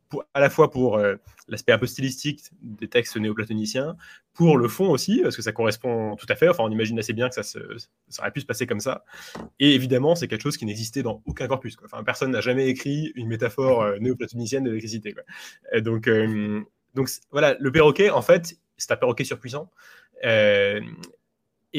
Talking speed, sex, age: 200 wpm, male, 20-39